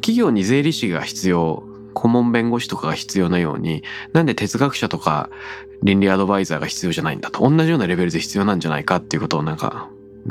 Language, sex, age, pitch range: Japanese, male, 20-39, 95-140 Hz